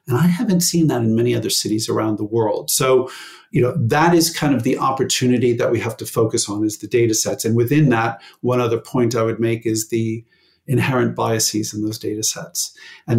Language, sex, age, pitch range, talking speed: English, male, 50-69, 110-125 Hz, 225 wpm